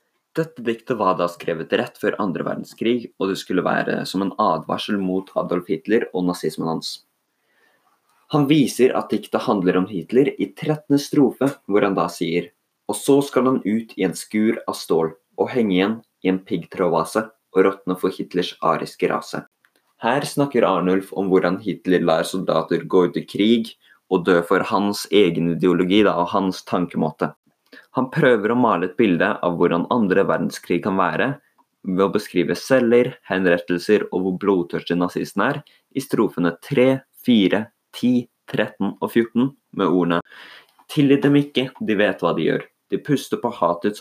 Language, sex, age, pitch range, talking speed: English, male, 20-39, 90-120 Hz, 165 wpm